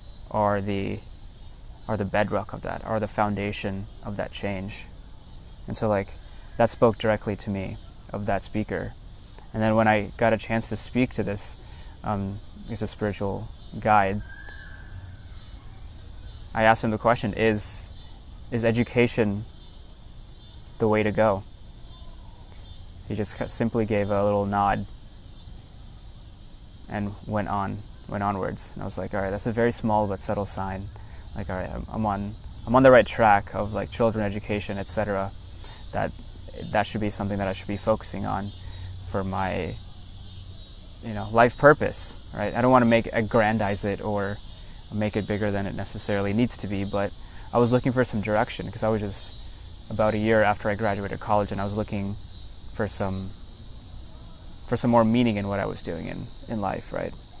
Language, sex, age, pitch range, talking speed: English, male, 20-39, 95-110 Hz, 170 wpm